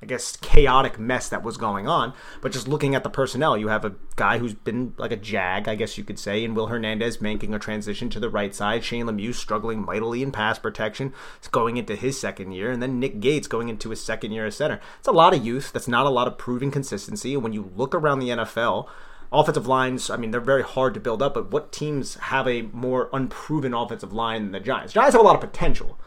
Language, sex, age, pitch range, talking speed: English, male, 30-49, 110-135 Hz, 250 wpm